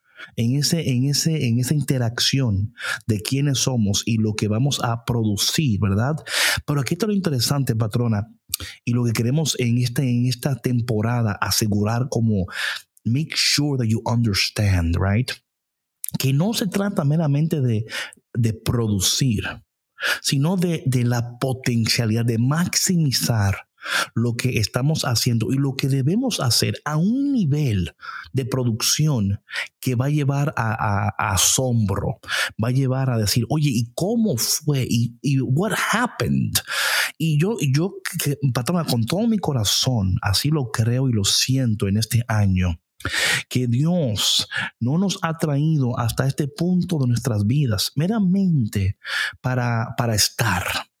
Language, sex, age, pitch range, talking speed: Spanish, male, 50-69, 115-145 Hz, 140 wpm